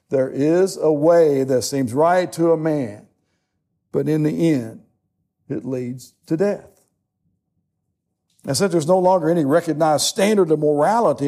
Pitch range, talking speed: 130-180 Hz, 150 wpm